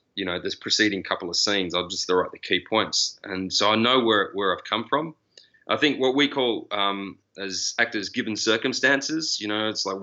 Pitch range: 105-135 Hz